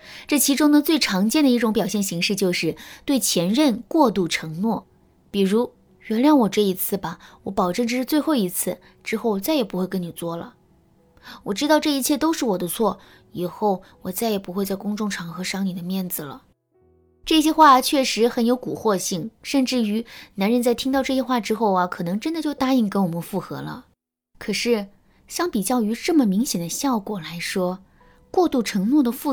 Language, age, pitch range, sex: Chinese, 20-39, 180-255 Hz, female